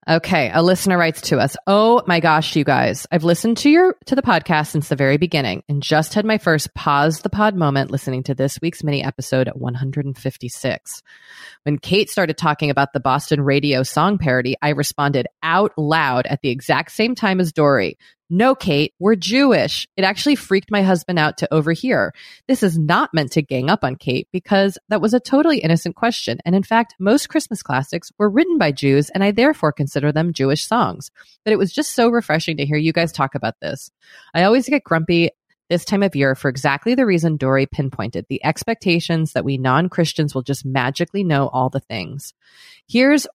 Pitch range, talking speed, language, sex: 140-195 Hz, 200 wpm, English, female